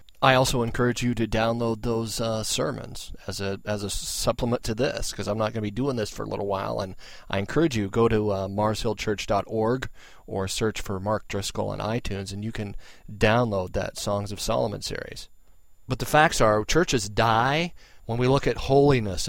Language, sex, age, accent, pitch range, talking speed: English, male, 40-59, American, 100-120 Hz, 195 wpm